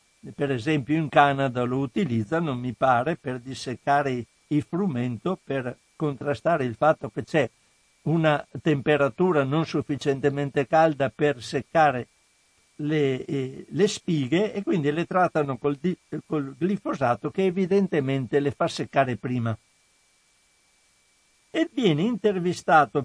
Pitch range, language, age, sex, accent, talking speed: 140-180 Hz, Italian, 60-79, male, native, 115 wpm